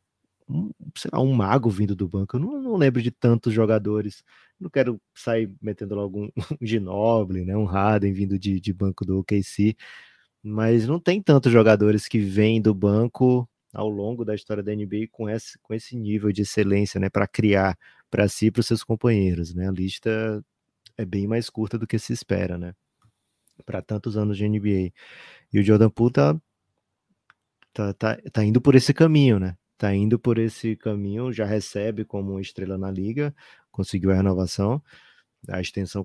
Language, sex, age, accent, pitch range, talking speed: Portuguese, male, 20-39, Brazilian, 100-115 Hz, 180 wpm